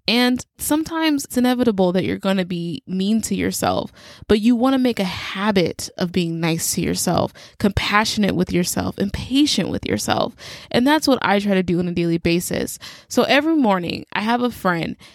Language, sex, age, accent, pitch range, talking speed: English, female, 20-39, American, 180-230 Hz, 185 wpm